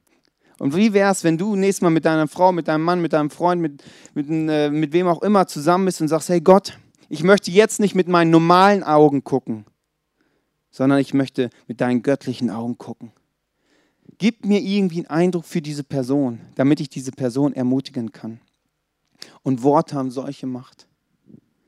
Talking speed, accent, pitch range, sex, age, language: 175 wpm, German, 130-180 Hz, male, 40-59, German